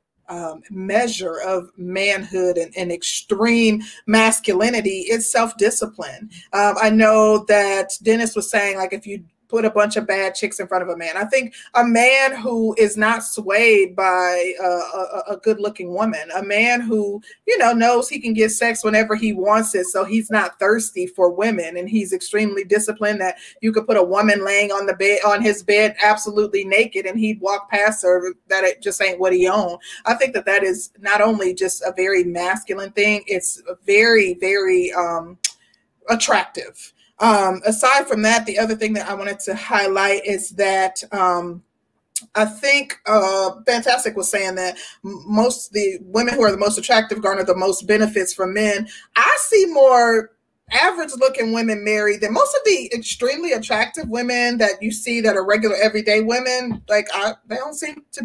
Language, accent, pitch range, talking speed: English, American, 190-225 Hz, 180 wpm